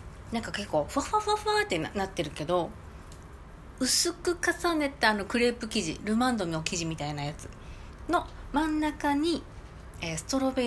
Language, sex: Japanese, female